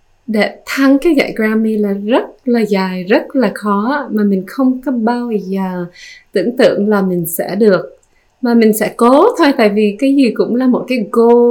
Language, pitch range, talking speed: Vietnamese, 205-250 Hz, 200 wpm